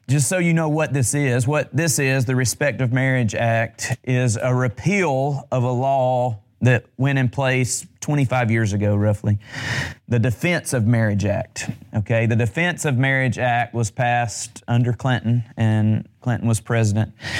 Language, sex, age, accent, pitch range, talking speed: English, male, 30-49, American, 110-130 Hz, 165 wpm